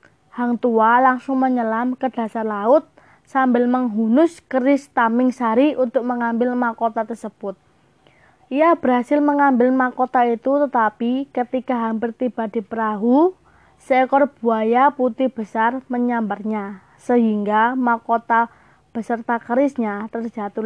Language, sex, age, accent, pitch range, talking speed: Indonesian, female, 20-39, native, 230-265 Hz, 105 wpm